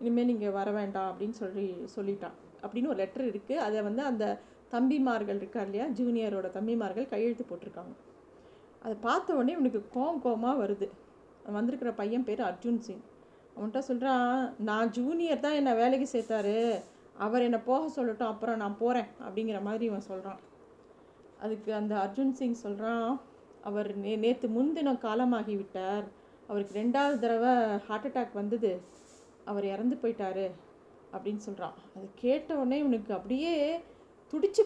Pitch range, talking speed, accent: 210-260 Hz, 140 wpm, native